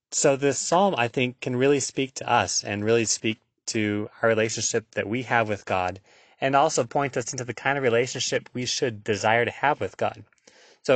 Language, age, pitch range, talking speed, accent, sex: English, 20-39, 100-125 Hz, 210 wpm, American, male